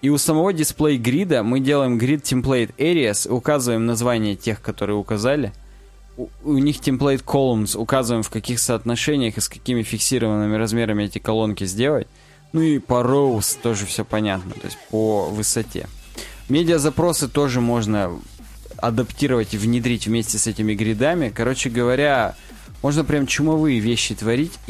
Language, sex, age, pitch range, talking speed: Russian, male, 20-39, 110-145 Hz, 135 wpm